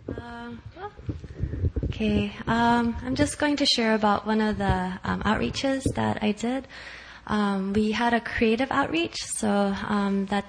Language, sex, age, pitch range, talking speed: English, female, 20-39, 185-225 Hz, 150 wpm